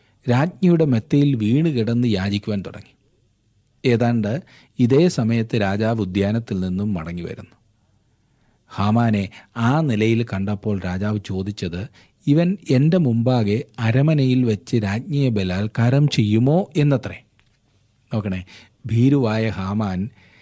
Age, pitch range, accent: 40-59, 105-135 Hz, native